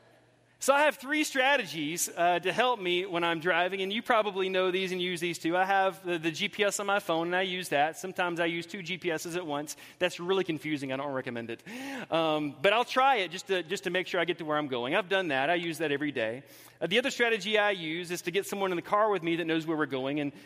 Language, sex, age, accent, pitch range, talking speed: English, male, 30-49, American, 155-195 Hz, 275 wpm